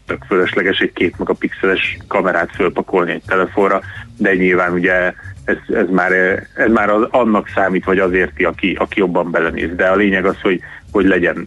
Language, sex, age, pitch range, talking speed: Hungarian, male, 30-49, 90-100 Hz, 160 wpm